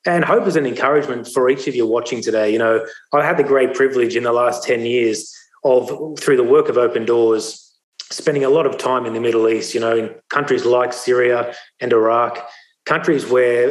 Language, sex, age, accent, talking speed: English, male, 30-49, Australian, 215 wpm